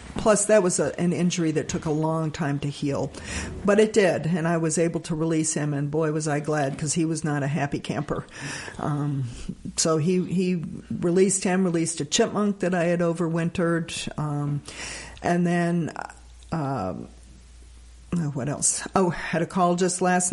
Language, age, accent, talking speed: English, 50-69, American, 180 wpm